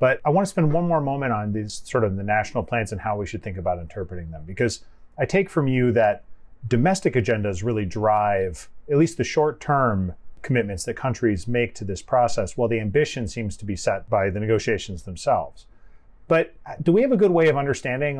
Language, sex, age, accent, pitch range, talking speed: English, male, 30-49, American, 105-130 Hz, 210 wpm